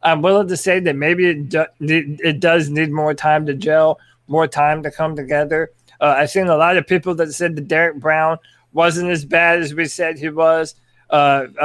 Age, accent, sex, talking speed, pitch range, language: 20-39, American, male, 210 wpm, 145-175 Hz, English